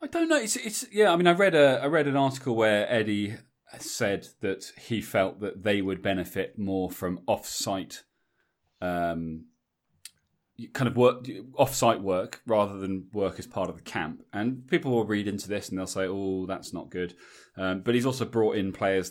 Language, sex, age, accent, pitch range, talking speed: English, male, 30-49, British, 95-145 Hz, 195 wpm